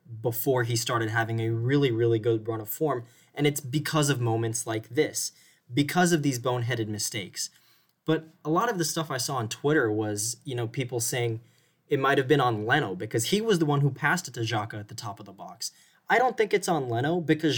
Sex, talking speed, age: male, 230 wpm, 20-39